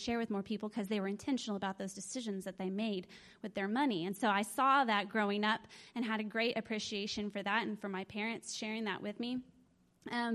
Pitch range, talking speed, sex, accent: 210-245 Hz, 230 wpm, female, American